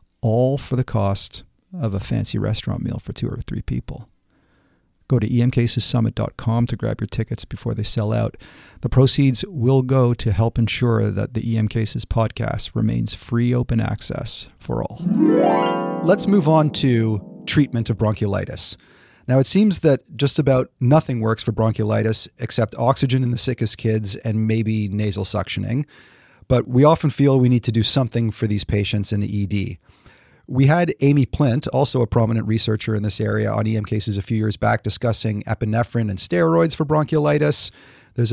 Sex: male